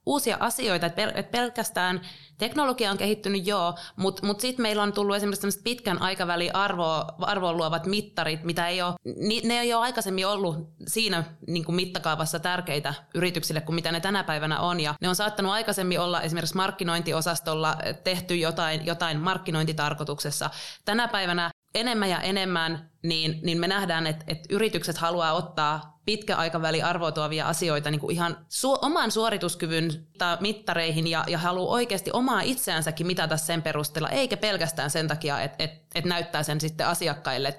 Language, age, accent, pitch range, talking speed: Finnish, 20-39, native, 165-200 Hz, 135 wpm